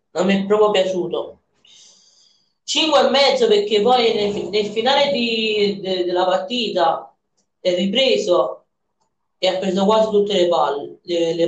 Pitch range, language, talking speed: 175-225 Hz, Italian, 140 wpm